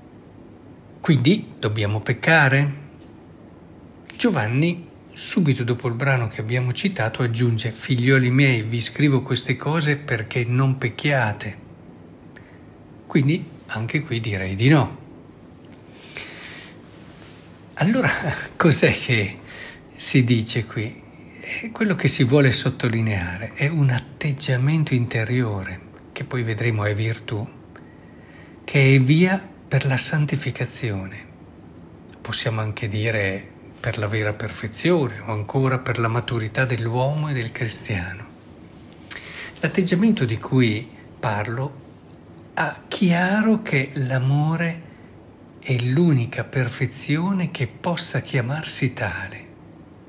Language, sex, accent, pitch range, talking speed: Italian, male, native, 110-145 Hz, 100 wpm